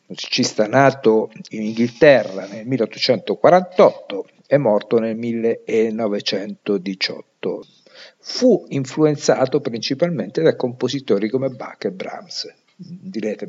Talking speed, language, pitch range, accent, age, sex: 90 wpm, Italian, 110-155 Hz, native, 50-69, male